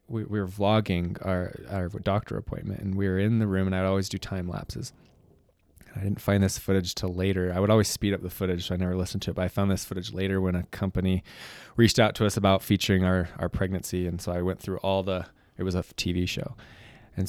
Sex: male